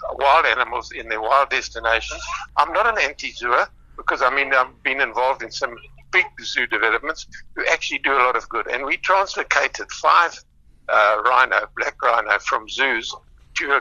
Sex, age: male, 60-79